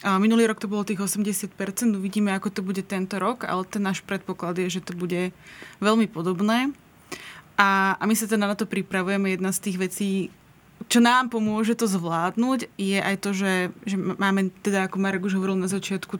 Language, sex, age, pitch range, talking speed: Slovak, female, 20-39, 190-210 Hz, 195 wpm